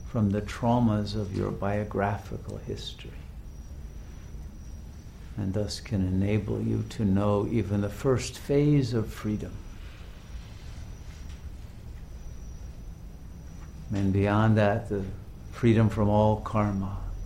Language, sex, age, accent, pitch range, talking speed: English, male, 60-79, American, 80-105 Hz, 95 wpm